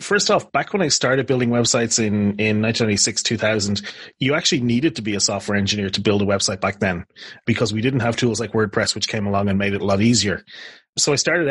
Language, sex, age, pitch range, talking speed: English, male, 30-49, 105-125 Hz, 235 wpm